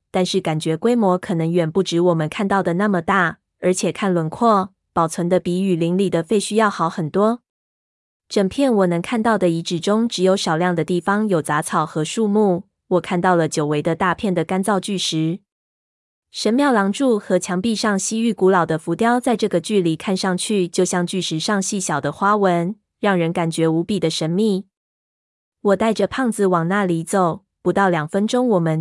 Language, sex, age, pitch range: Chinese, female, 20-39, 175-210 Hz